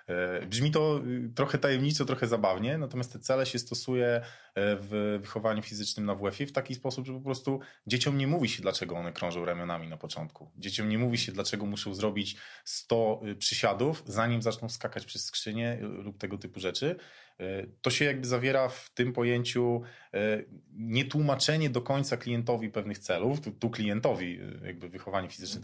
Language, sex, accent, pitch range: Polish, male, native, 95-130 Hz